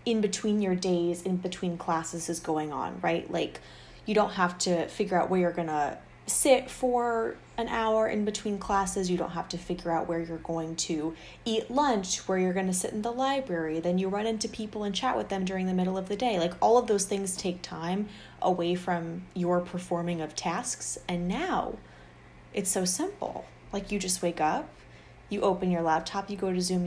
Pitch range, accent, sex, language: 170-200 Hz, American, female, English